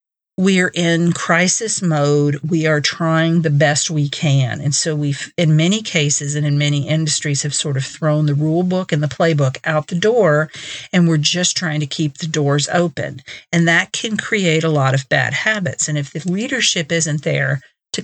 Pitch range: 145-170 Hz